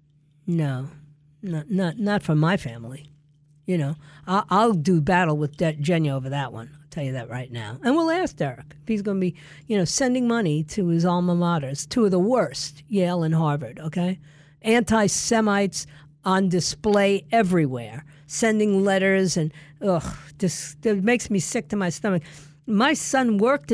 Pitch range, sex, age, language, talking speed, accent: 150-205 Hz, female, 50-69, English, 170 wpm, American